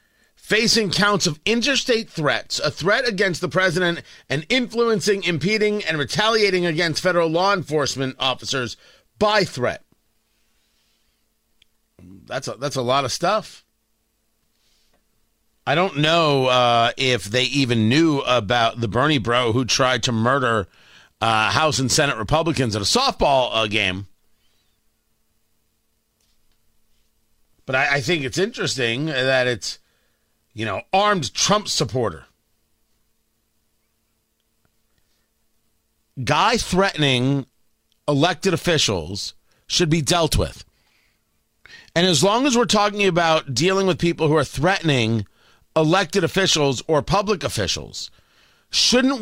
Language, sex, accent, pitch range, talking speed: English, male, American, 110-185 Hz, 115 wpm